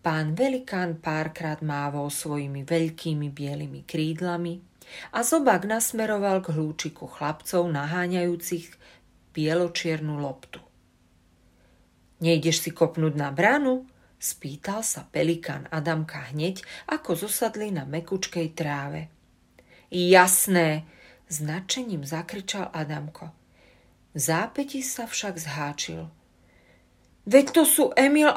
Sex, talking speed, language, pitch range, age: female, 100 wpm, Slovak, 145-195 Hz, 40-59